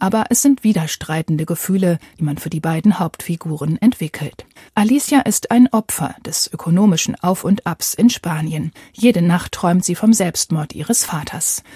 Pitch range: 175-230 Hz